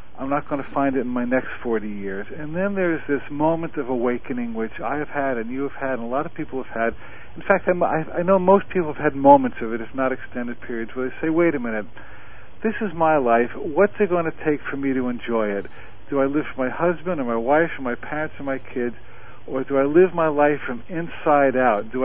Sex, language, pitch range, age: male, English, 120-160 Hz, 50-69